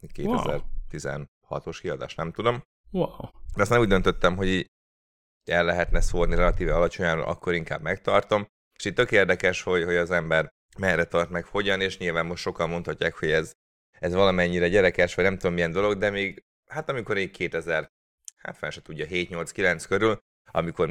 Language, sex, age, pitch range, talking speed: Hungarian, male, 30-49, 80-95 Hz, 165 wpm